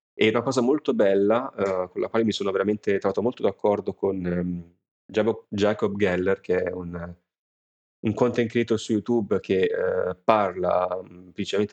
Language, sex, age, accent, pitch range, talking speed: Italian, male, 30-49, native, 100-125 Hz, 165 wpm